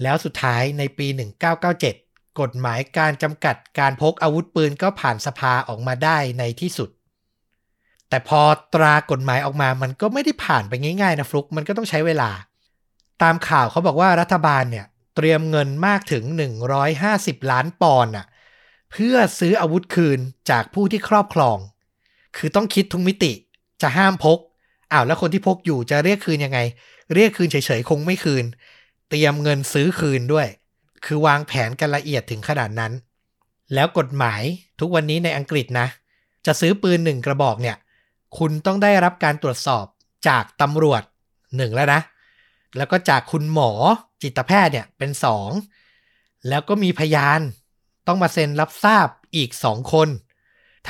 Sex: male